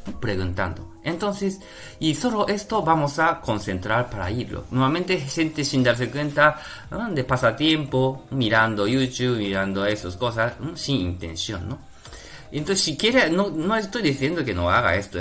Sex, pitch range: male, 105-155 Hz